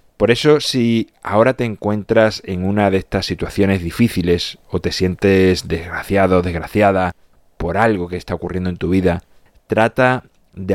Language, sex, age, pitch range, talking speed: Spanish, male, 30-49, 90-110 Hz, 150 wpm